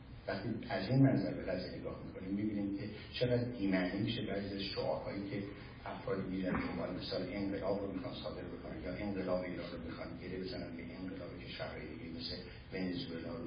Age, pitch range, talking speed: 60-79, 95-115 Hz, 175 wpm